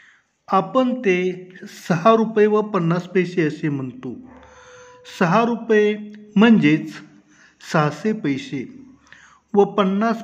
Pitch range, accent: 155-210 Hz, native